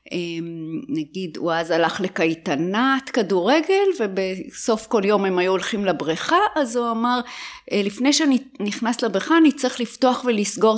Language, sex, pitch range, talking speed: Hebrew, female, 190-265 Hz, 135 wpm